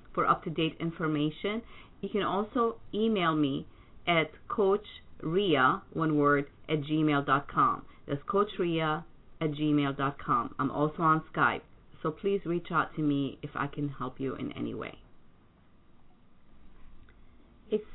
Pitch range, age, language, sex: 145-170 Hz, 30-49, English, female